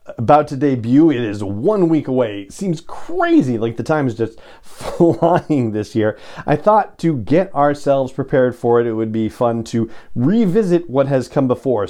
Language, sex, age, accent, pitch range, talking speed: English, male, 40-59, American, 115-160 Hz, 180 wpm